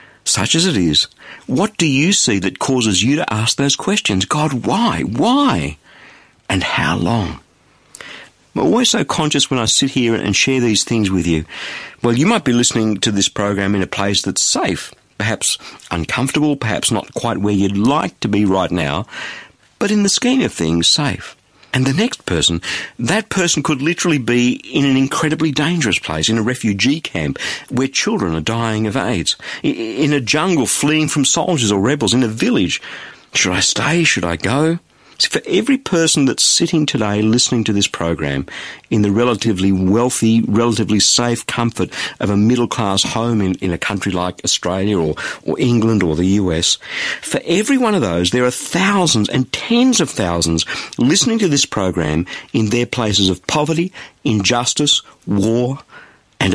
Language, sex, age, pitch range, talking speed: English, male, 50-69, 100-150 Hz, 175 wpm